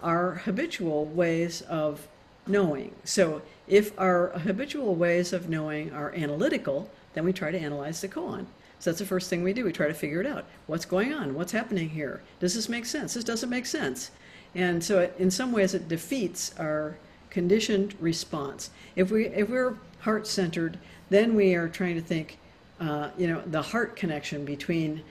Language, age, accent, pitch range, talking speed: English, 60-79, American, 160-200 Hz, 185 wpm